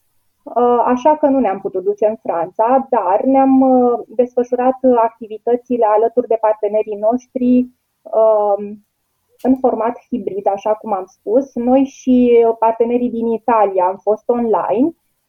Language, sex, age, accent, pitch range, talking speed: Romanian, female, 20-39, native, 215-255 Hz, 120 wpm